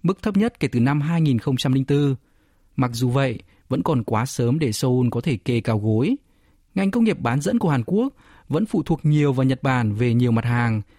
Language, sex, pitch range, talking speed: Vietnamese, male, 120-165 Hz, 220 wpm